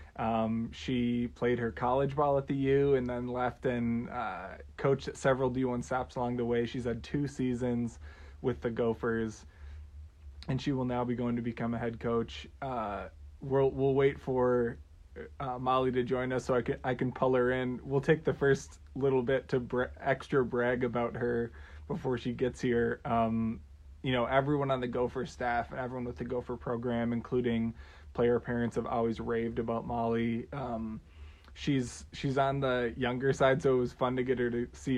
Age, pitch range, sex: 20-39, 115-130 Hz, male